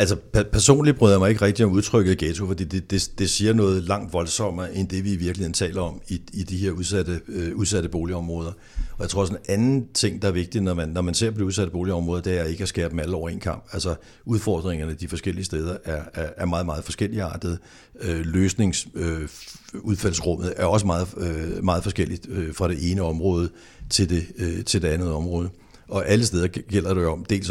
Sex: male